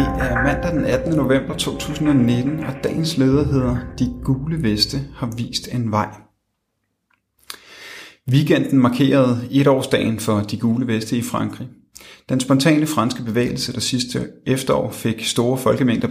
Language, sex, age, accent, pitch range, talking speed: Danish, male, 30-49, native, 110-135 Hz, 135 wpm